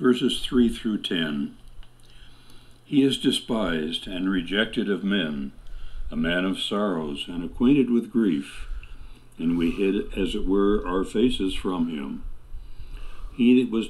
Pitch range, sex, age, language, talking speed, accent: 95-120 Hz, male, 60-79, English, 135 wpm, American